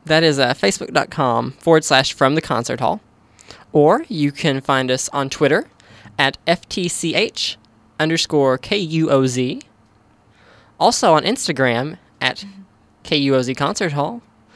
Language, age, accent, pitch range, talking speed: English, 10-29, American, 130-165 Hz, 115 wpm